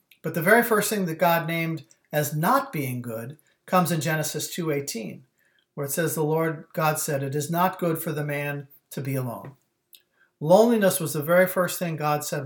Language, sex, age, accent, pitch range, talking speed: English, male, 50-69, American, 145-180 Hz, 195 wpm